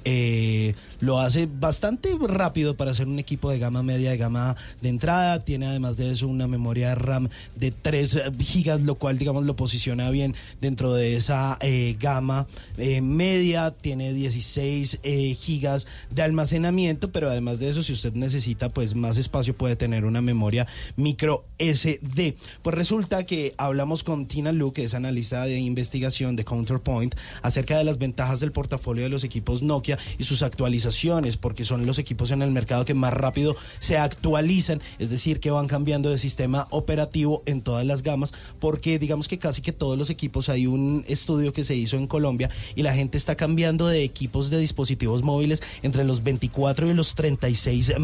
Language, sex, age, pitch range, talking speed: Spanish, male, 30-49, 125-150 Hz, 180 wpm